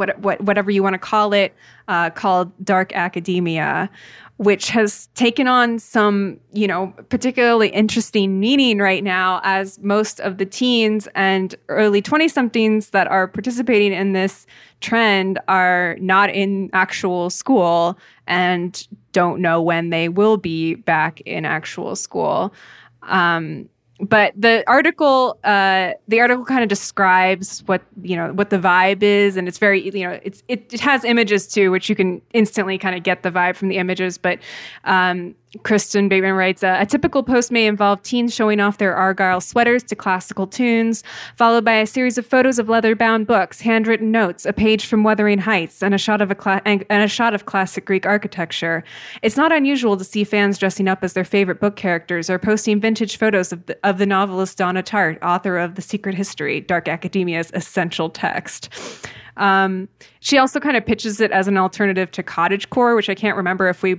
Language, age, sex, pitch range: English, 20-39, female, 185-220 Hz